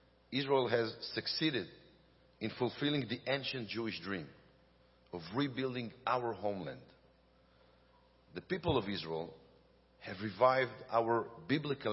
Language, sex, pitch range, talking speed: English, male, 105-135 Hz, 105 wpm